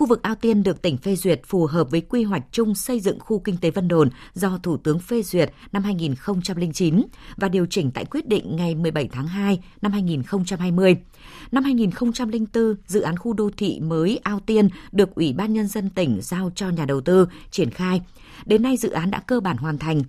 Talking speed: 215 wpm